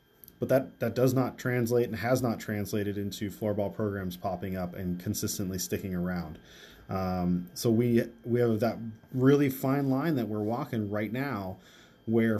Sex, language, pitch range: male, English, 105-130 Hz